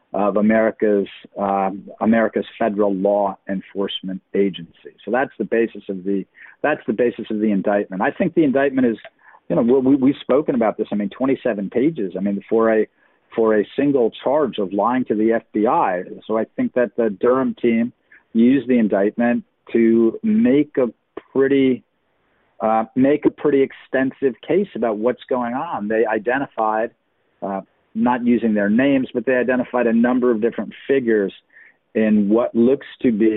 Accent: American